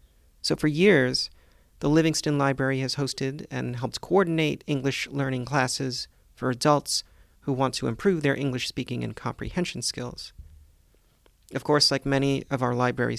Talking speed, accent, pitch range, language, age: 150 wpm, American, 115-140 Hz, English, 40-59